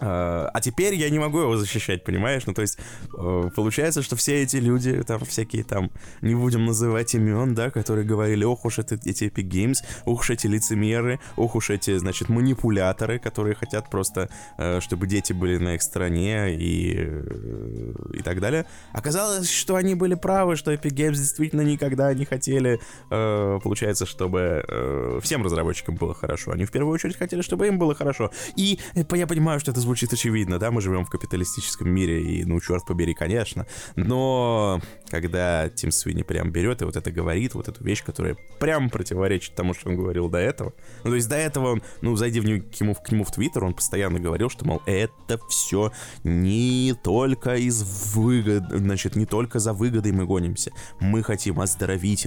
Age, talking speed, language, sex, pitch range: 20-39, 180 wpm, Russian, male, 95-125 Hz